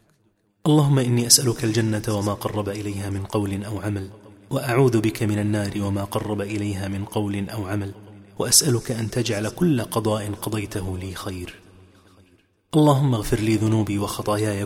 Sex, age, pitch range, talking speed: male, 30-49, 105-120 Hz, 145 wpm